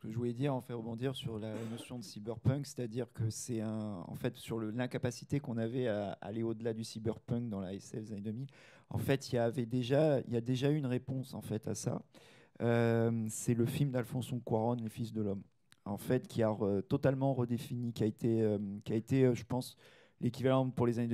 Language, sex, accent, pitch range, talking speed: French, male, French, 110-130 Hz, 225 wpm